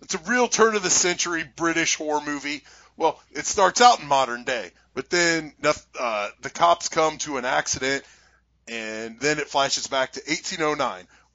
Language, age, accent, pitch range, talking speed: English, 30-49, American, 130-175 Hz, 175 wpm